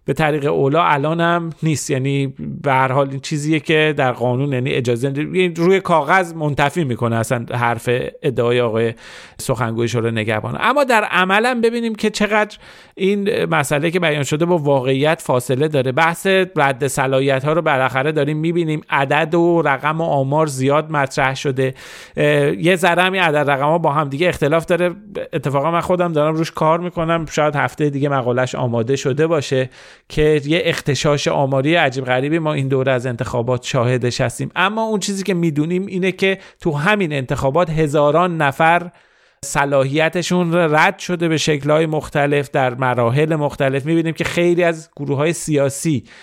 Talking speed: 160 wpm